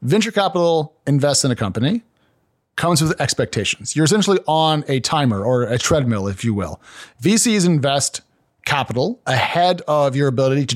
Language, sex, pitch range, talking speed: English, male, 125-160 Hz, 155 wpm